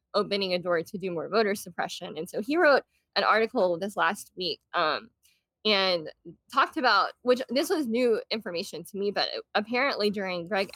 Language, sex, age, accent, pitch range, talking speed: English, female, 20-39, American, 180-230 Hz, 180 wpm